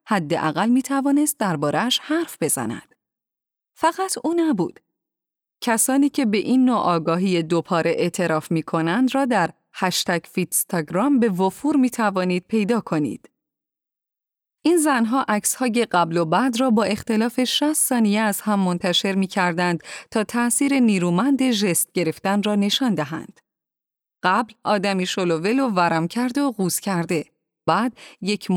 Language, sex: Persian, female